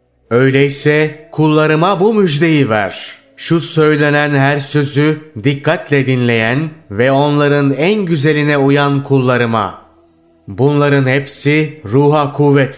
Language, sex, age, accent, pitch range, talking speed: Turkish, male, 30-49, native, 125-150 Hz, 100 wpm